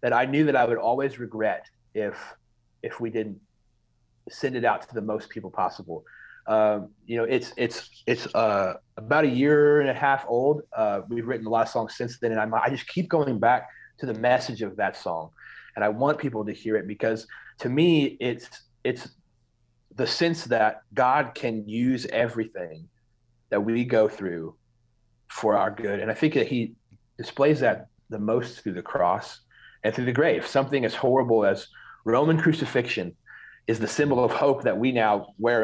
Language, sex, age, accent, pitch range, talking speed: English, male, 30-49, American, 110-135 Hz, 190 wpm